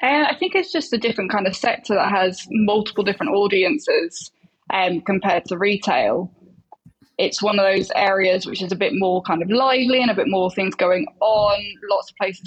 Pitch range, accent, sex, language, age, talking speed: 190-215 Hz, British, female, English, 10-29, 205 wpm